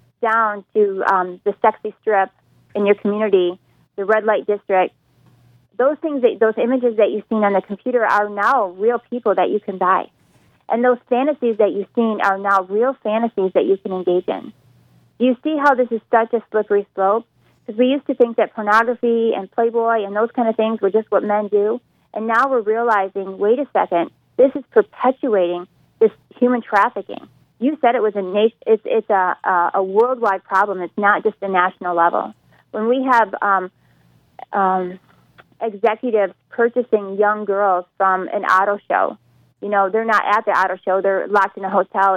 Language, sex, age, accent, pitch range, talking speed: English, female, 30-49, American, 195-230 Hz, 190 wpm